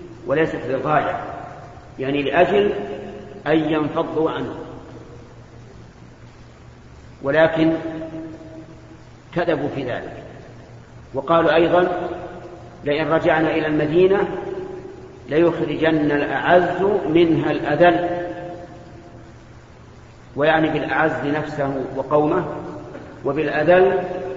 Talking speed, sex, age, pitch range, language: 65 wpm, male, 50-69, 135-175 Hz, Arabic